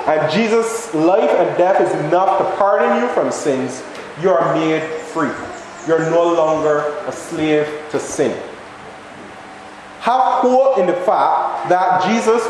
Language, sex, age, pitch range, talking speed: English, male, 20-39, 160-230 Hz, 145 wpm